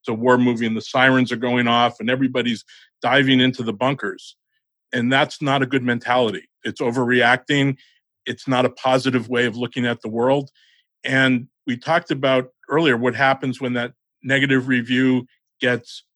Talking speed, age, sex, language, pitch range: 165 wpm, 50-69, male, English, 125-150 Hz